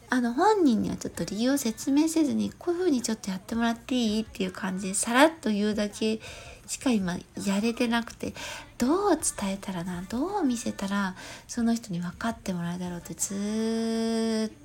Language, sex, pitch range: Japanese, female, 195-280 Hz